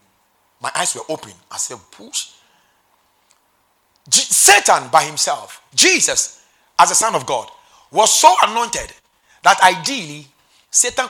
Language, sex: English, male